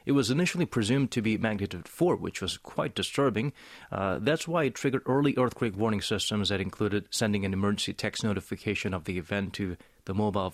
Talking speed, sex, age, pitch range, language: 195 wpm, male, 30-49, 95-120 Hz, English